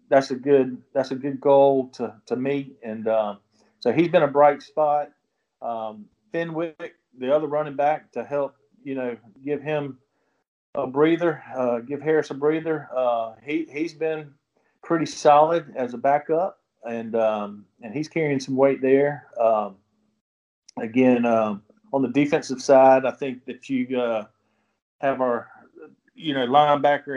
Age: 40-59